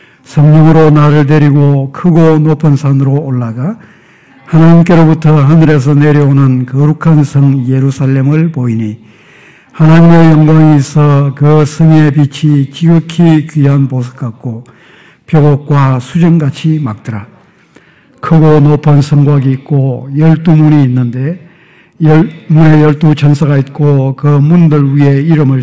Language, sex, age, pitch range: Korean, male, 60-79, 140-155 Hz